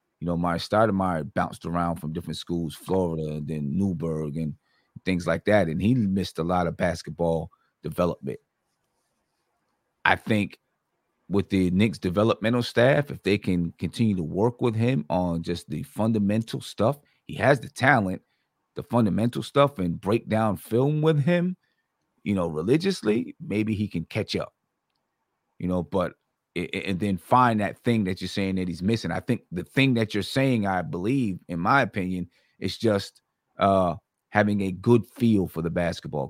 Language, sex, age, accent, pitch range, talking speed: English, male, 30-49, American, 90-115 Hz, 170 wpm